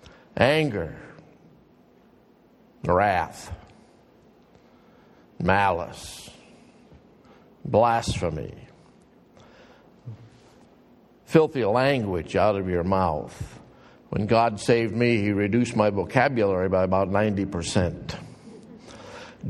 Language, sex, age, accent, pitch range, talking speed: English, male, 60-79, American, 115-145 Hz, 65 wpm